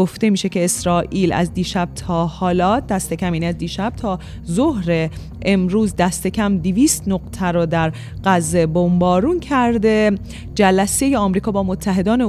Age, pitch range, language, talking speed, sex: 30-49, 170-200 Hz, Persian, 145 wpm, female